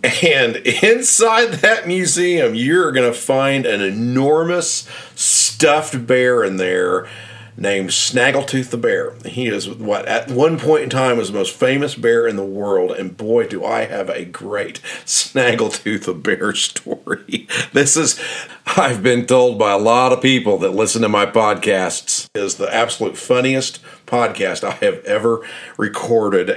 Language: English